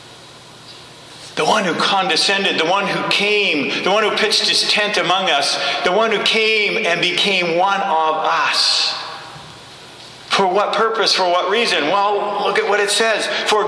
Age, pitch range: 50-69, 155-210 Hz